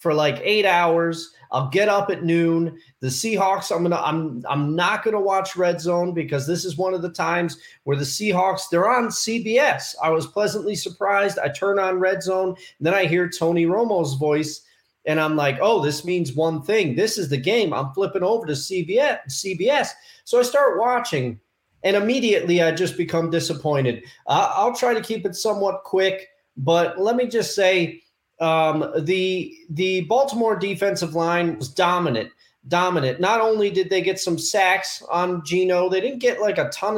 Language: English